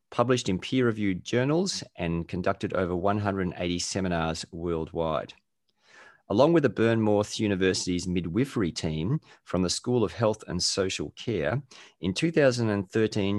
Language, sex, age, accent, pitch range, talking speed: English, male, 30-49, Australian, 90-115 Hz, 120 wpm